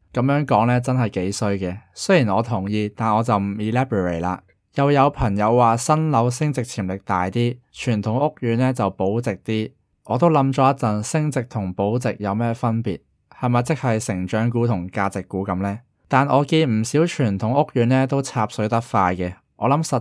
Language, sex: Chinese, male